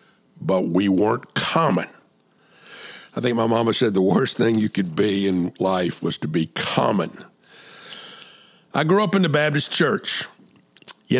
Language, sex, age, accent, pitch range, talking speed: English, male, 50-69, American, 100-130 Hz, 155 wpm